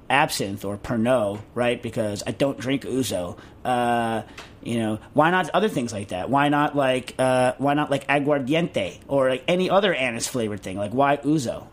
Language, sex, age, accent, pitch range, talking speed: English, male, 40-59, American, 120-155 Hz, 185 wpm